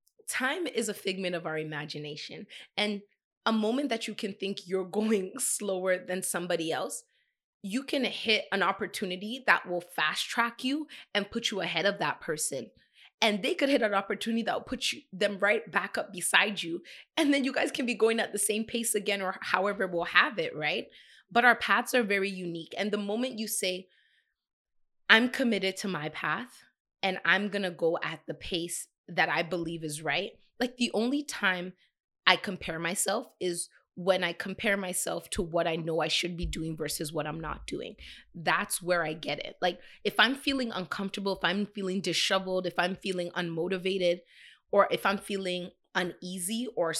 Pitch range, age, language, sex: 175-220 Hz, 20-39, English, female